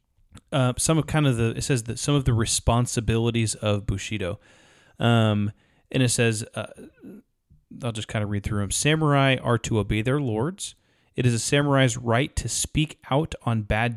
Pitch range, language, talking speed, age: 110-135 Hz, English, 185 wpm, 30-49